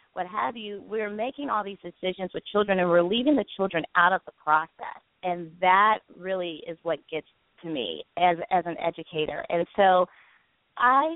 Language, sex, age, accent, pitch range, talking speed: English, female, 40-59, American, 175-225 Hz, 185 wpm